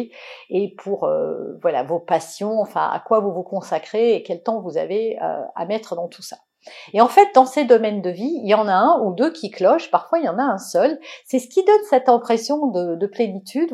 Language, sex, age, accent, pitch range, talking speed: French, female, 50-69, French, 200-275 Hz, 245 wpm